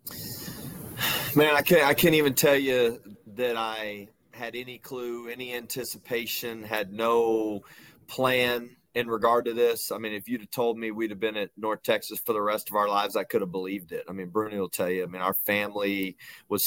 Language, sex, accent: English, male, American